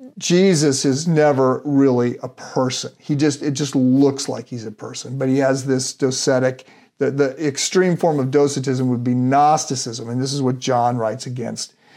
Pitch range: 125-150 Hz